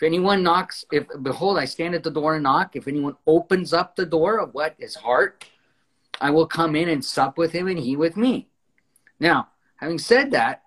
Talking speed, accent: 215 wpm, American